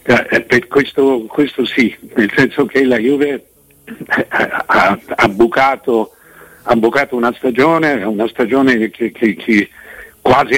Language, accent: Italian, native